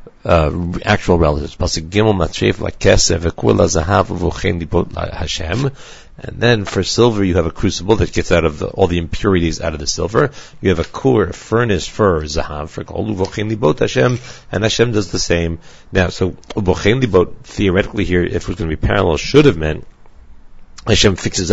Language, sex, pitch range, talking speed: English, male, 85-105 Hz, 150 wpm